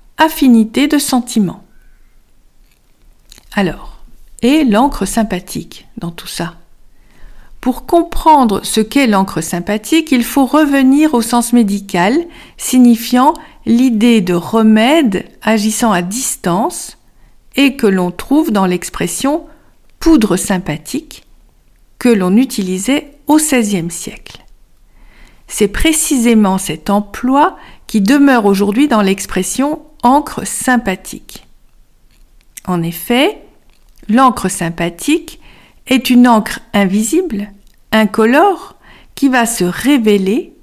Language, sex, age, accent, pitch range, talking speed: French, female, 50-69, French, 190-270 Hz, 100 wpm